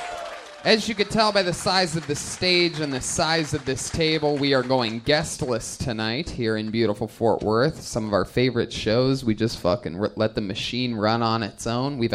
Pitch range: 115-160 Hz